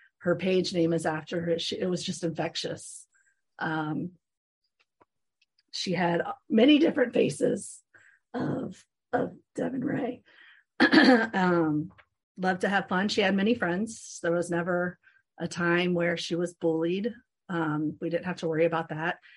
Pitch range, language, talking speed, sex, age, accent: 160-190 Hz, English, 145 wpm, female, 30-49, American